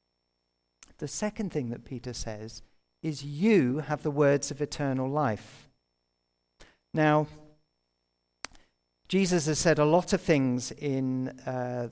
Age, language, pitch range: 50-69, English, 115-155 Hz